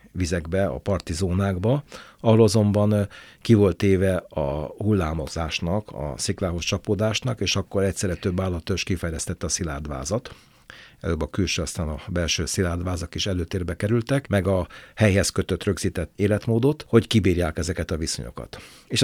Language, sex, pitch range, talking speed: Hungarian, male, 90-110 Hz, 130 wpm